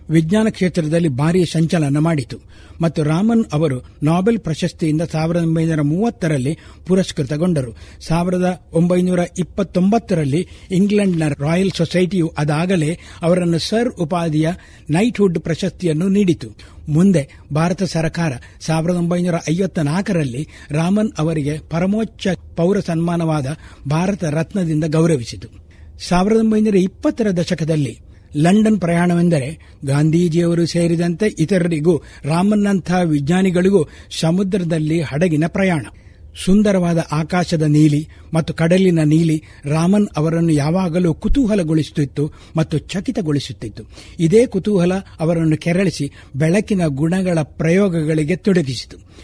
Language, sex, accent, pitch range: Kannada, male, native, 150-185 Hz